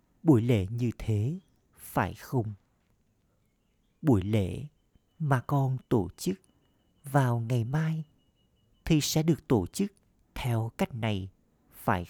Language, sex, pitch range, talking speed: Vietnamese, male, 100-130 Hz, 120 wpm